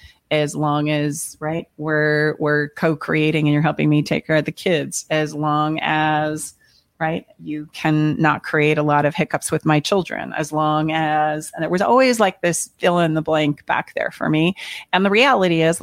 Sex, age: female, 30-49